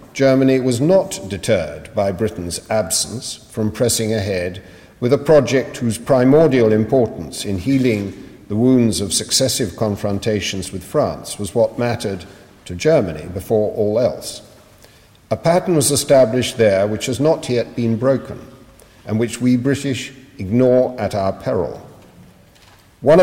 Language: English